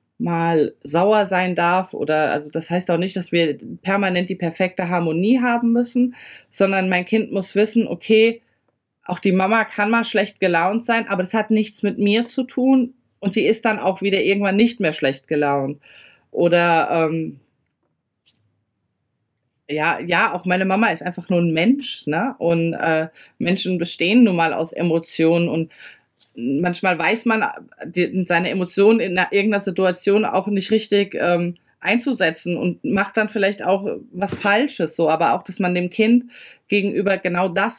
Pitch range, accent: 170-205 Hz, German